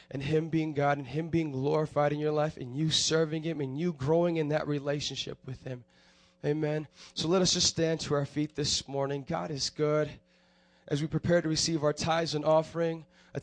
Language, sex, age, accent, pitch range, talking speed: English, male, 20-39, American, 150-180 Hz, 210 wpm